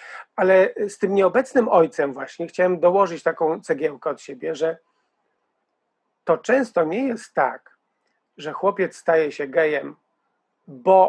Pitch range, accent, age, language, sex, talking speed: 175-235 Hz, Polish, 40-59, English, male, 130 wpm